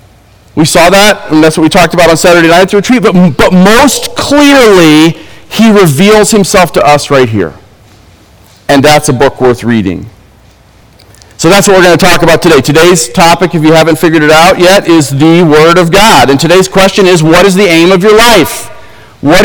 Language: English